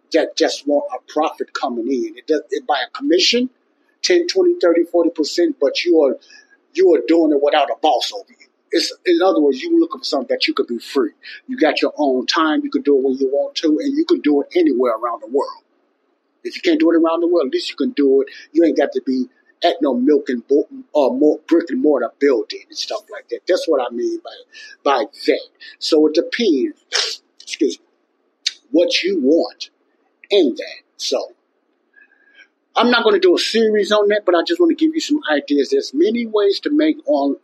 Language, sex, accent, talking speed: English, male, American, 220 wpm